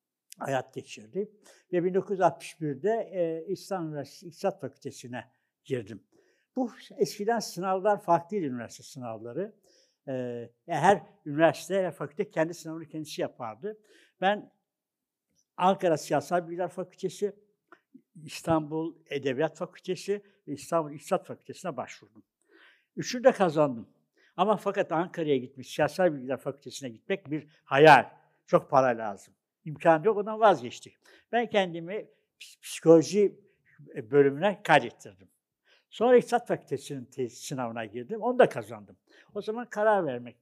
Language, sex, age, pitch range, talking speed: Turkish, male, 60-79, 140-195 Hz, 110 wpm